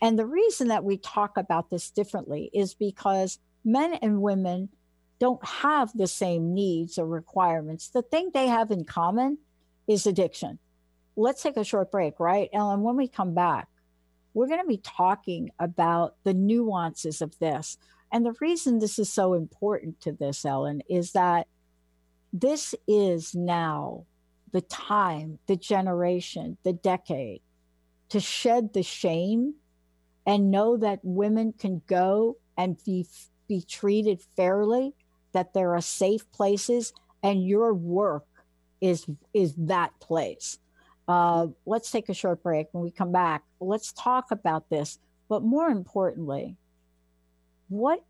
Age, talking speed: 60-79, 145 wpm